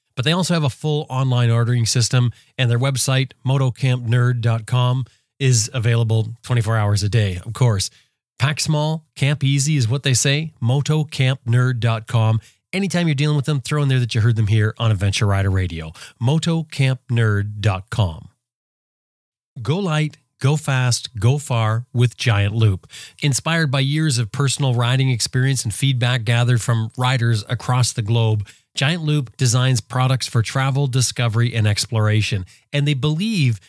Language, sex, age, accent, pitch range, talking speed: English, male, 30-49, American, 115-140 Hz, 150 wpm